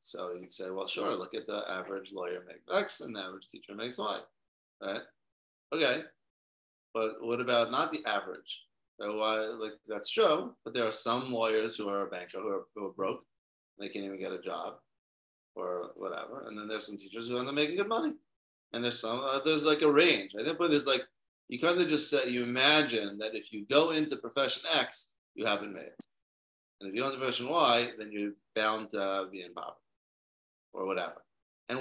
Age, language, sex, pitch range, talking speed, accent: 30-49, English, male, 110-155 Hz, 205 wpm, American